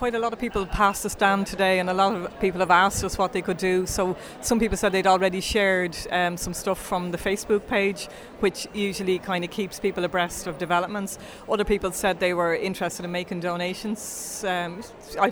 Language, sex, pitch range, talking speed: English, female, 180-200 Hz, 215 wpm